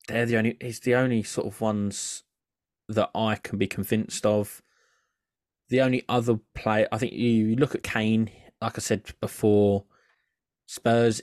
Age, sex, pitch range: 20-39, male, 100-110 Hz